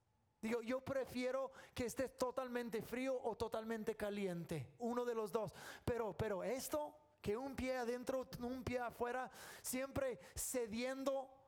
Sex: male